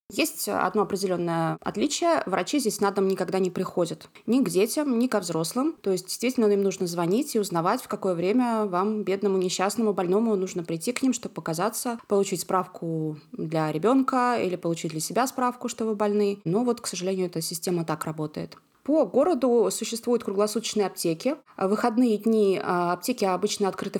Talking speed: 175 wpm